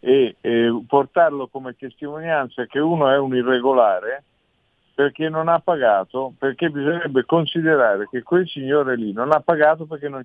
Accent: native